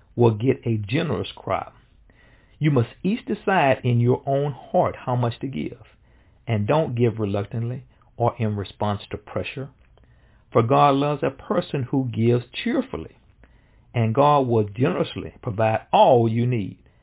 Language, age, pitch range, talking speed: English, 50-69, 110-135 Hz, 150 wpm